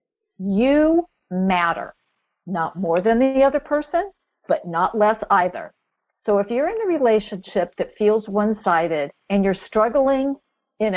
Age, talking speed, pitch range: 50-69, 135 wpm, 180-225 Hz